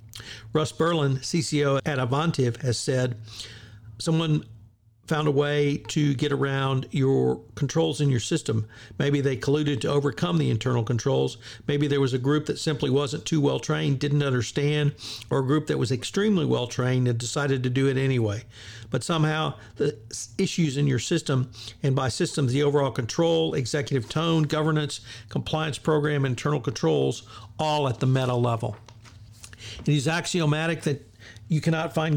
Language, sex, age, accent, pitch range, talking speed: English, male, 50-69, American, 115-150 Hz, 155 wpm